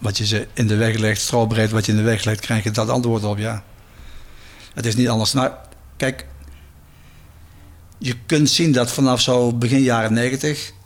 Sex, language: male, Dutch